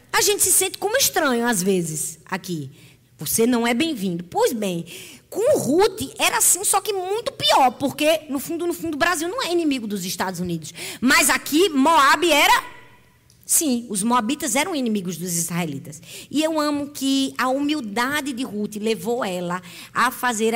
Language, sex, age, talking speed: Portuguese, female, 20-39, 175 wpm